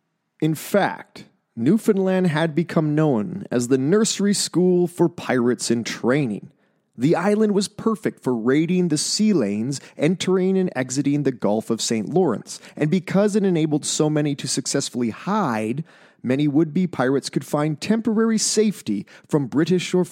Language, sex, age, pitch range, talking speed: English, male, 30-49, 130-185 Hz, 150 wpm